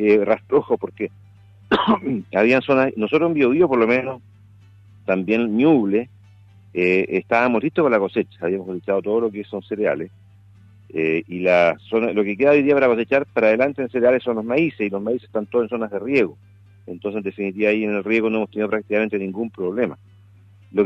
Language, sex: Spanish, male